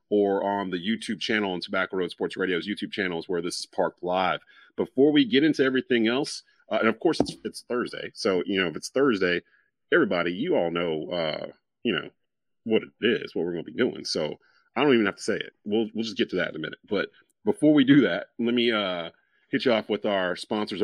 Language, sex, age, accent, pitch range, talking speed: English, male, 40-59, American, 105-135 Hz, 240 wpm